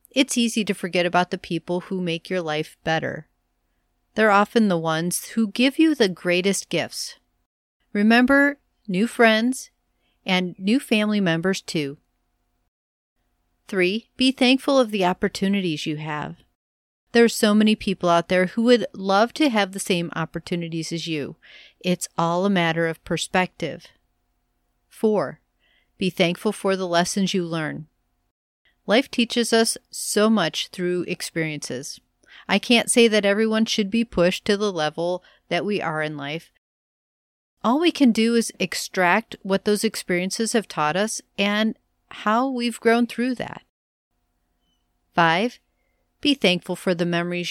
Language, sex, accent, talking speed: English, female, American, 145 wpm